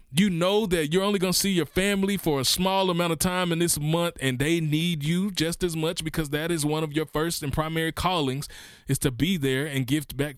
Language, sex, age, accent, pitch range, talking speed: English, male, 20-39, American, 105-145 Hz, 250 wpm